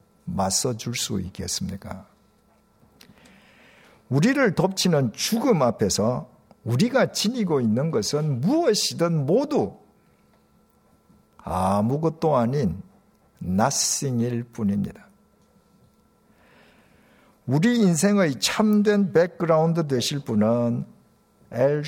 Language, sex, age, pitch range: Korean, male, 50-69, 125-205 Hz